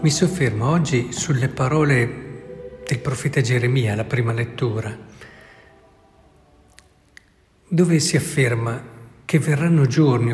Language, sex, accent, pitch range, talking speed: Italian, male, native, 125-155 Hz, 100 wpm